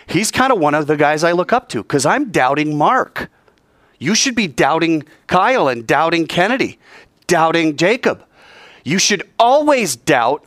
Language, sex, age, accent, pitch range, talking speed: English, male, 40-59, American, 150-220 Hz, 165 wpm